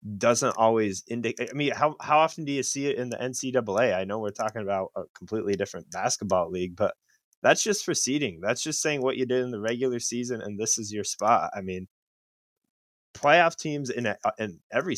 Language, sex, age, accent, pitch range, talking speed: English, male, 20-39, American, 105-130 Hz, 210 wpm